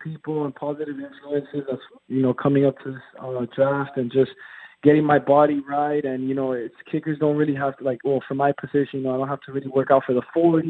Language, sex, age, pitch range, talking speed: English, male, 20-39, 130-145 Hz, 240 wpm